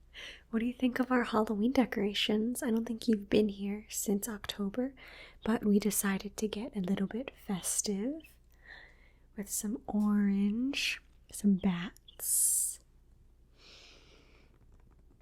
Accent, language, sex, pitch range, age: American, Japanese, female, 195-235 Hz, 20-39